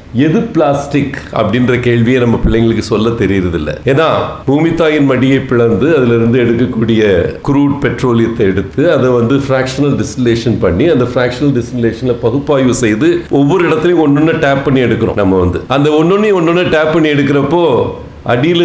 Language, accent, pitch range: Tamil, native, 115-145 Hz